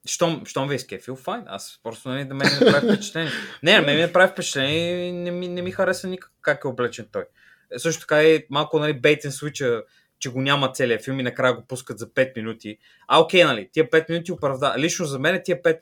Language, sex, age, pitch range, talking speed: Bulgarian, male, 20-39, 125-160 Hz, 245 wpm